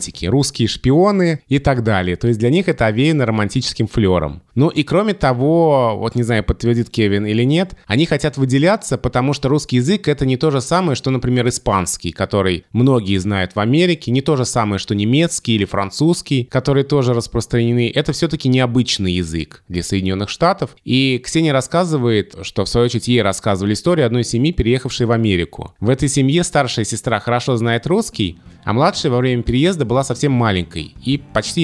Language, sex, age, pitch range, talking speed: Russian, male, 20-39, 110-145 Hz, 180 wpm